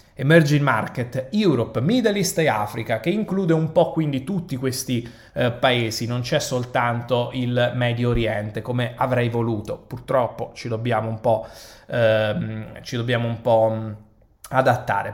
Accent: native